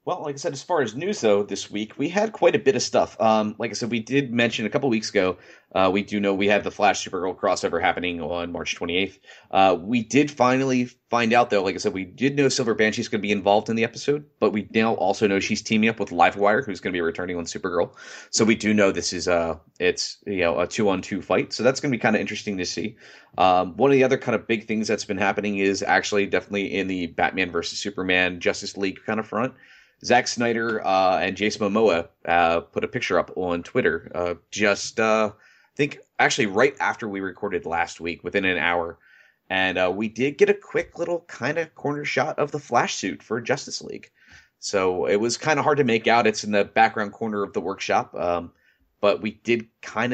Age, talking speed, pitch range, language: 30-49, 230 wpm, 95-120 Hz, English